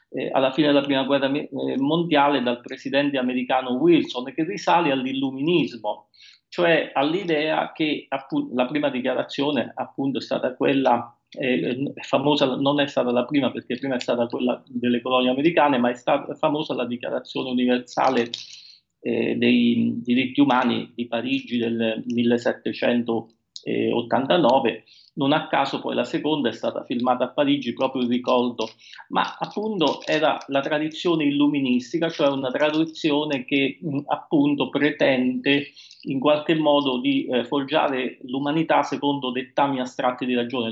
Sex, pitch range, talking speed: male, 125-155 Hz, 130 wpm